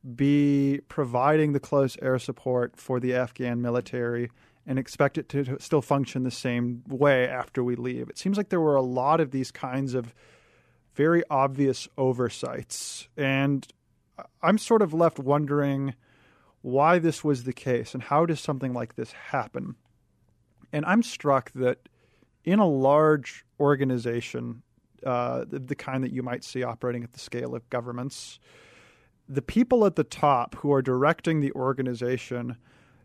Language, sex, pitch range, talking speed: English, male, 125-145 Hz, 155 wpm